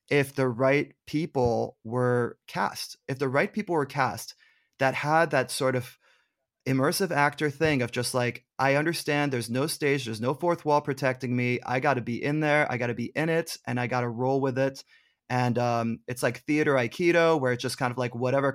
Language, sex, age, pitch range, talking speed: English, male, 30-49, 125-155 Hz, 215 wpm